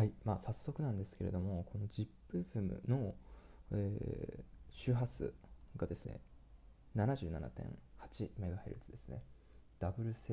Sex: male